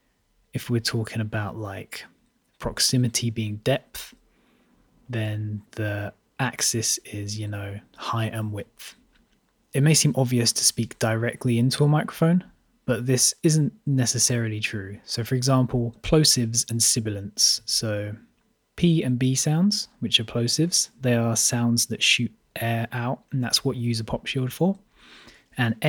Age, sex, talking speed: 20-39, male, 145 wpm